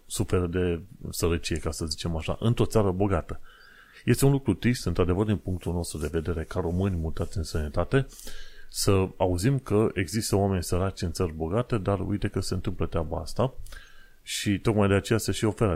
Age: 30-49